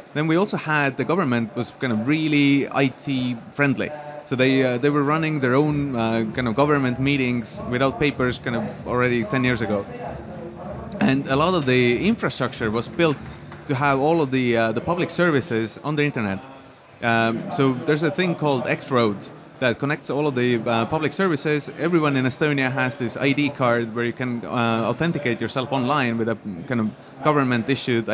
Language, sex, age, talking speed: English, male, 30-49, 185 wpm